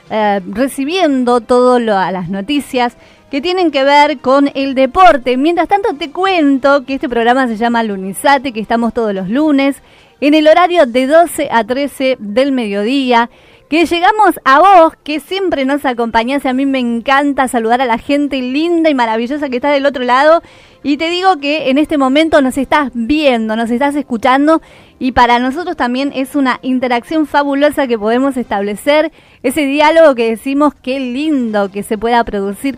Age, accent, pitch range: 30-49, American, 230-290 Hz